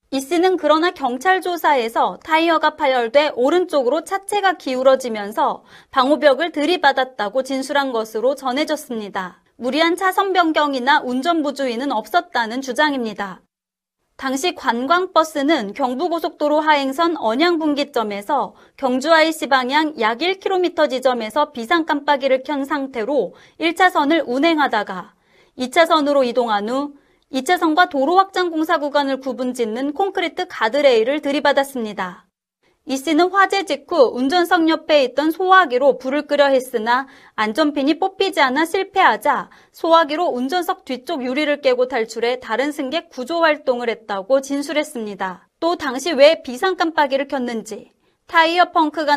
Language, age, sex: Korean, 30-49, female